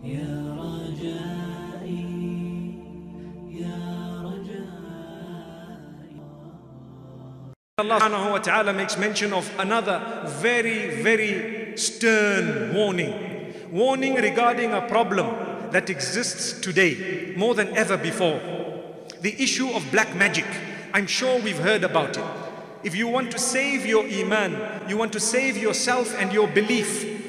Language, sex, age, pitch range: English, male, 50-69, 180-225 Hz